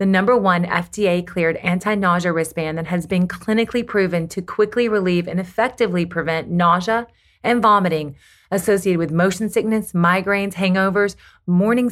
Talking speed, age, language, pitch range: 140 wpm, 30-49, English, 175-220 Hz